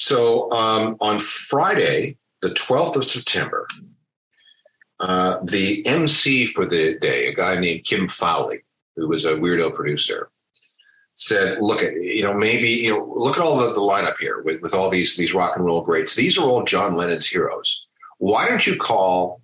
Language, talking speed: English, 180 wpm